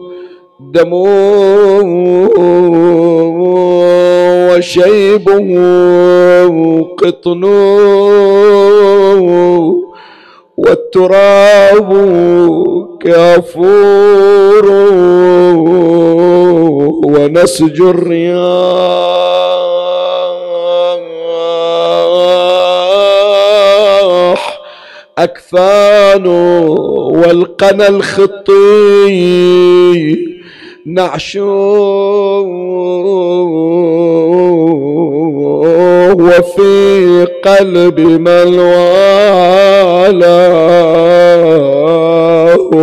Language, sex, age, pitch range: Arabic, male, 50-69, 175-200 Hz